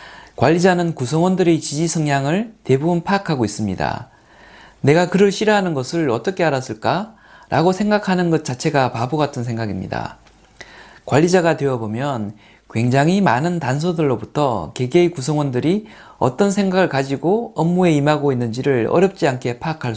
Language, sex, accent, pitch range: Korean, male, native, 125-180 Hz